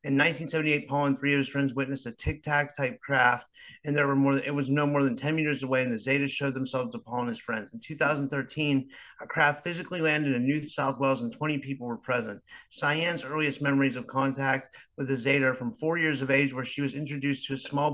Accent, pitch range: American, 130-145 Hz